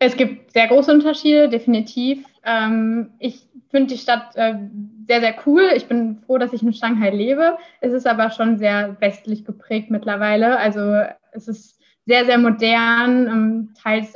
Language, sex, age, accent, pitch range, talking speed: German, female, 20-39, German, 215-240 Hz, 155 wpm